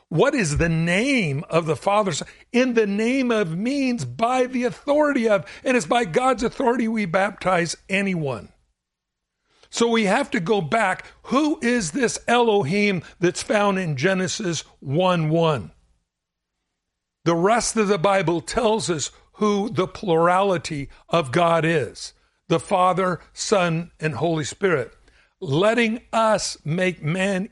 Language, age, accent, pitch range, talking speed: English, 60-79, American, 165-230 Hz, 135 wpm